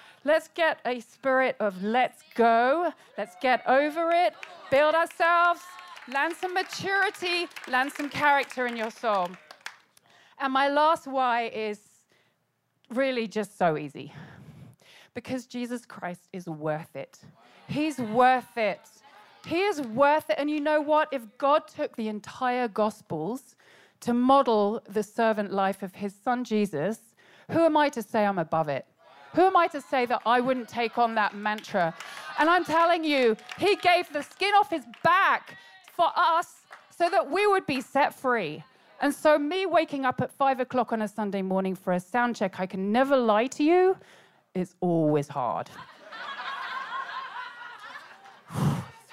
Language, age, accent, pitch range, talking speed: English, 40-59, British, 210-310 Hz, 160 wpm